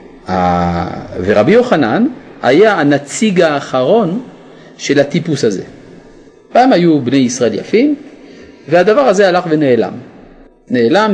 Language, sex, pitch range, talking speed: Hebrew, male, 125-185 Hz, 95 wpm